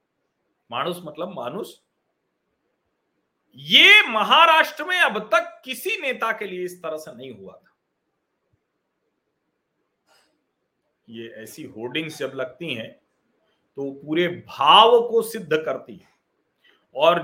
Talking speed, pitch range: 100 wpm, 170-260 Hz